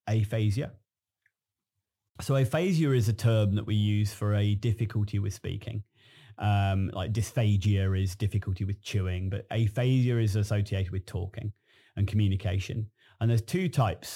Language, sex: English, male